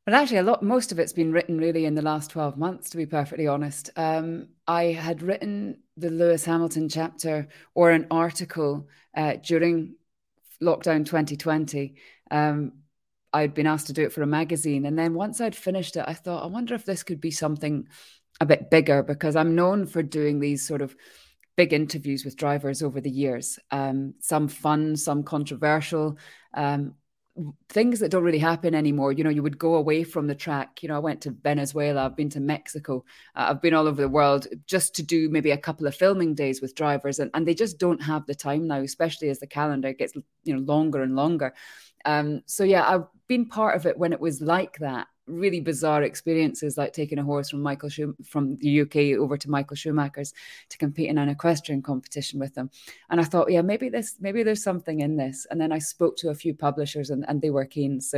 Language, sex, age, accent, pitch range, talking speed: English, female, 20-39, British, 145-170 Hz, 215 wpm